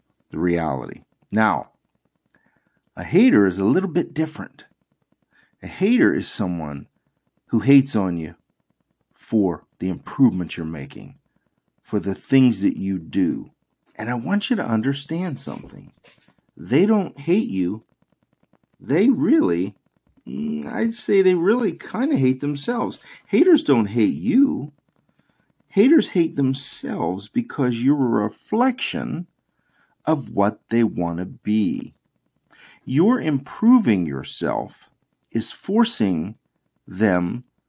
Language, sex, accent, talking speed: English, male, American, 120 wpm